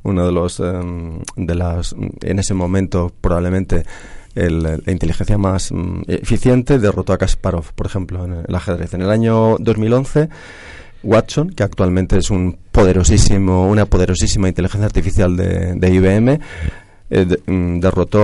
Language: Spanish